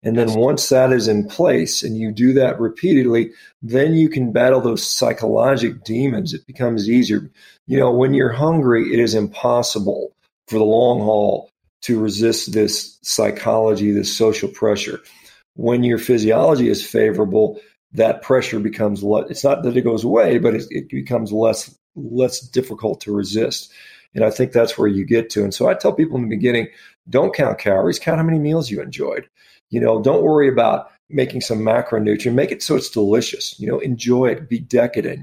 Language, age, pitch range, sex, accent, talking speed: English, 40-59, 110-135 Hz, male, American, 185 wpm